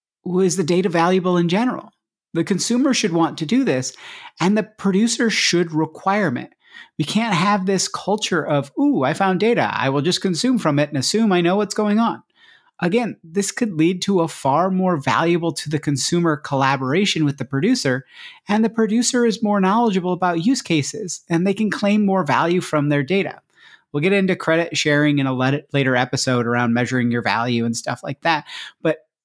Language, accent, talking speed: English, American, 195 wpm